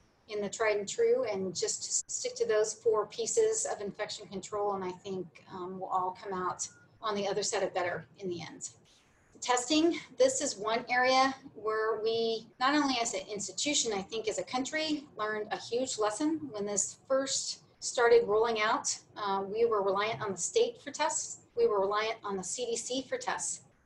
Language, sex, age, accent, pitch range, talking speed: English, female, 40-59, American, 205-275 Hz, 190 wpm